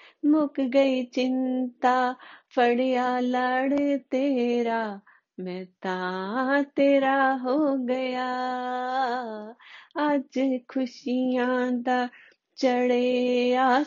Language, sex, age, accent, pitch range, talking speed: Hindi, female, 30-49, native, 250-285 Hz, 60 wpm